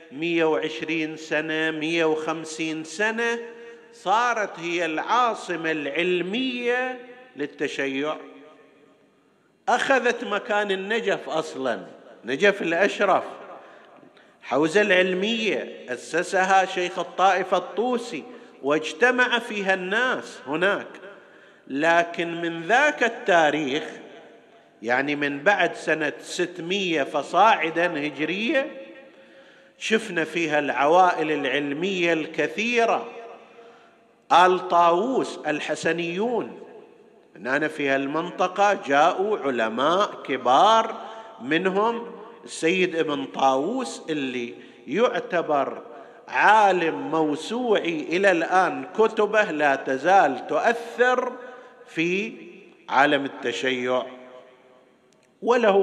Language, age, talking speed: Arabic, 50-69, 75 wpm